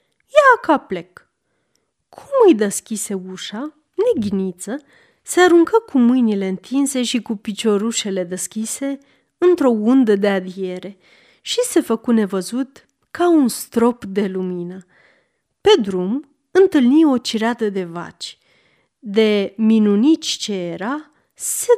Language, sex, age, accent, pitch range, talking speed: Romanian, female, 30-49, native, 200-290 Hz, 115 wpm